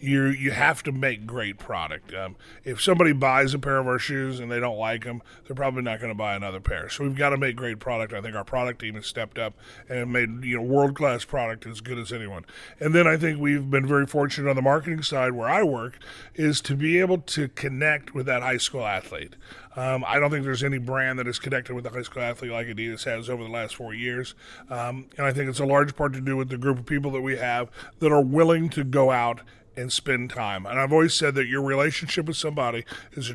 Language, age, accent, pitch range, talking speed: English, 30-49, American, 120-145 Hz, 250 wpm